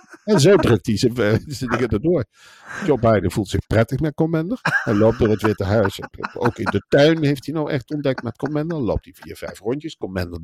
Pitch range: 100-145 Hz